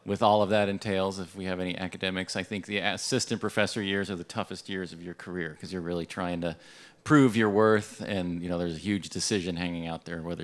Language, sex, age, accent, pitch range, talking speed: English, male, 40-59, American, 90-110 Hz, 240 wpm